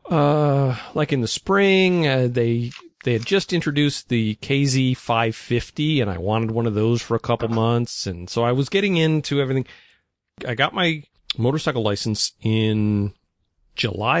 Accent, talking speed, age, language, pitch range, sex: American, 160 wpm, 40-59, English, 105-140 Hz, male